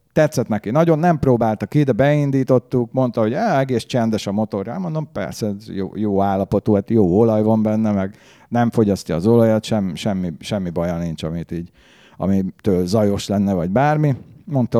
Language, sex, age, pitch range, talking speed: English, male, 50-69, 100-130 Hz, 160 wpm